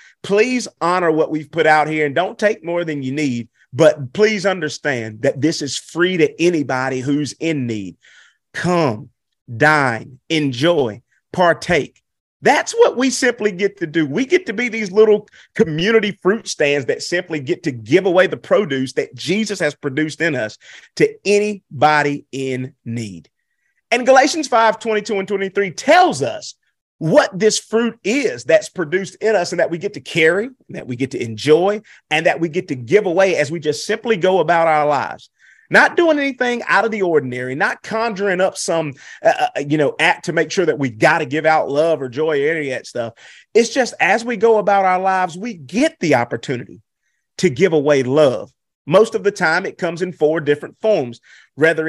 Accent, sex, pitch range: American, male, 150-200 Hz